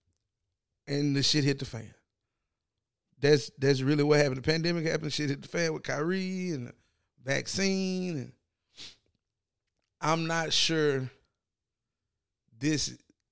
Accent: American